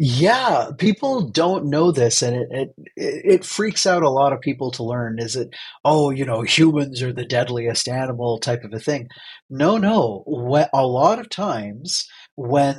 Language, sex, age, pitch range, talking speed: English, male, 30-49, 120-150 Hz, 185 wpm